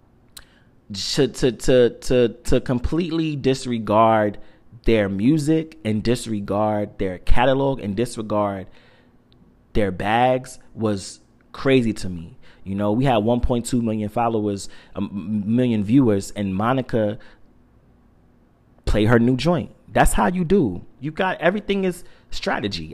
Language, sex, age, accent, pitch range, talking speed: English, male, 30-49, American, 105-135 Hz, 120 wpm